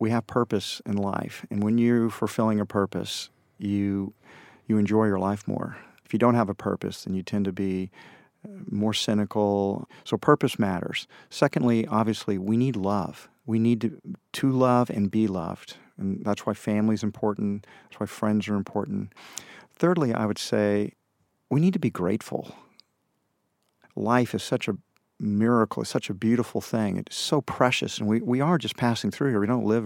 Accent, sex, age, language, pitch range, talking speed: American, male, 40-59, English, 100-120 Hz, 180 wpm